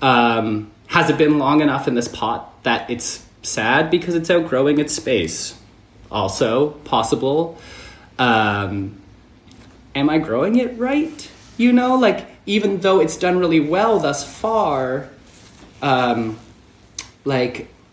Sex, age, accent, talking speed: male, 20-39, American, 125 wpm